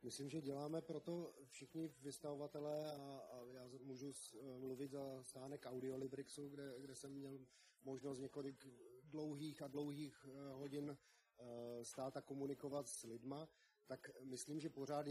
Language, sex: Slovak, male